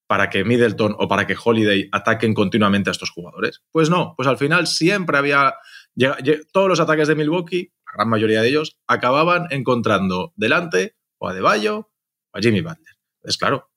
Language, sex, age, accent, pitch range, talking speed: Spanish, male, 30-49, Spanish, 105-150 Hz, 185 wpm